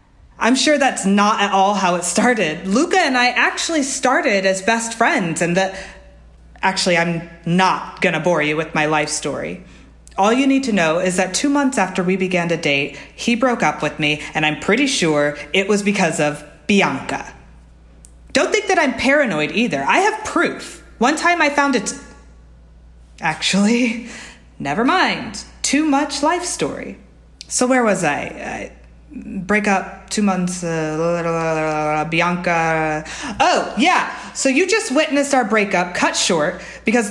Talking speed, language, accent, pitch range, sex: 170 wpm, English, American, 170-250 Hz, female